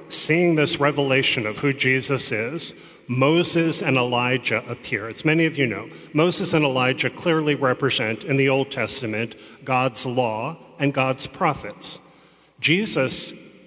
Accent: American